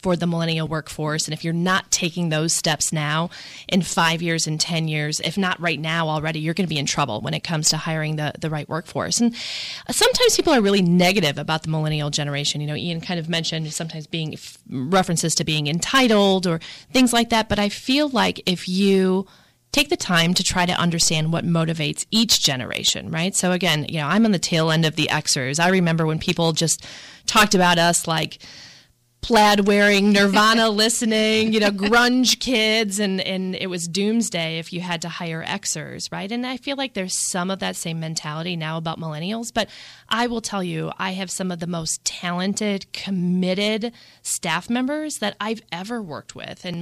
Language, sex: English, female